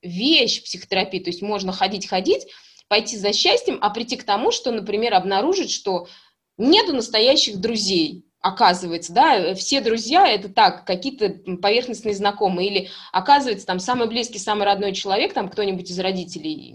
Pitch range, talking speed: 195-260 Hz, 150 wpm